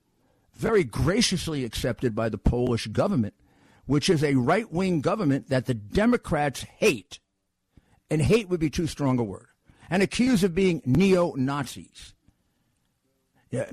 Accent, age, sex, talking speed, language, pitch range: American, 50-69, male, 140 wpm, English, 120-185 Hz